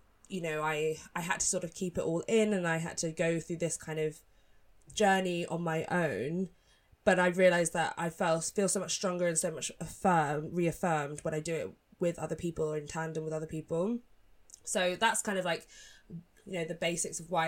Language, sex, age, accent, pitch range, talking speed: English, female, 20-39, British, 170-205 Hz, 220 wpm